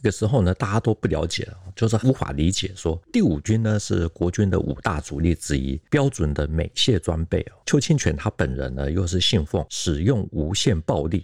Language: Chinese